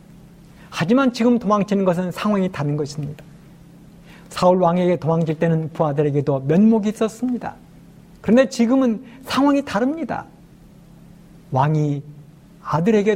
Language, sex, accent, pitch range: Korean, male, native, 165-210 Hz